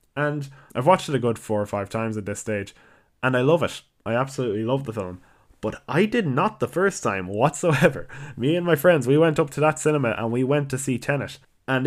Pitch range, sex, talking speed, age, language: 105-145 Hz, male, 240 wpm, 10-29, English